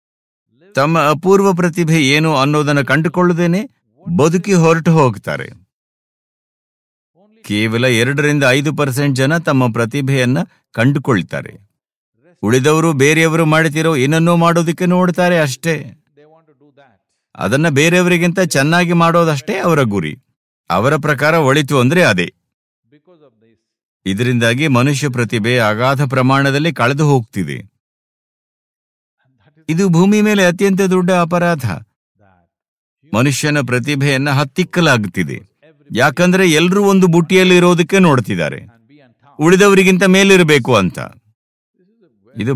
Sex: male